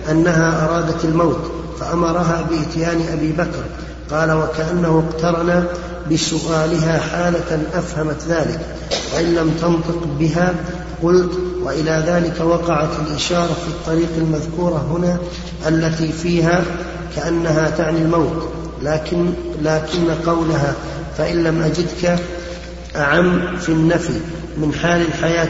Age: 40-59